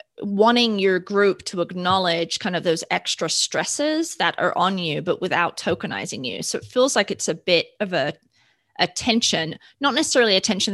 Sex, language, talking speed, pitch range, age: female, English, 185 wpm, 180-230 Hz, 20-39